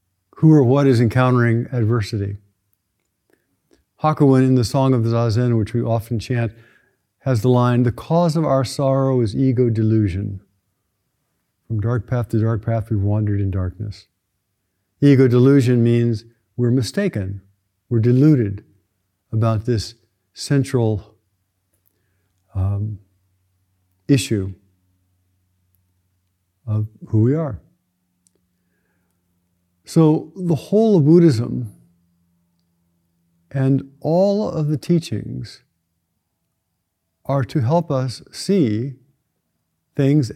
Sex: male